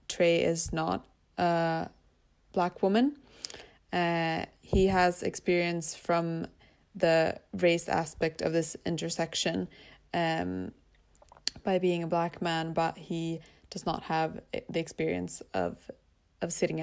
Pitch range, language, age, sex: 160-180 Hz, English, 20-39, female